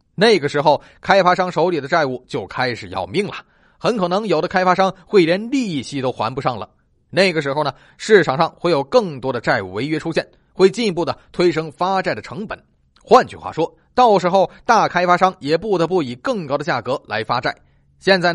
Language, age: Chinese, 30-49